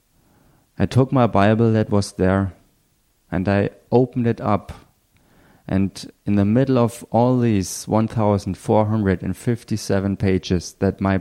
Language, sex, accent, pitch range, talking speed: German, male, German, 90-105 Hz, 125 wpm